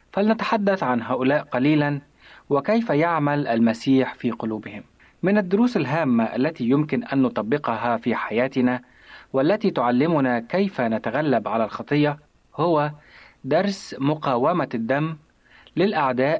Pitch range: 125-170 Hz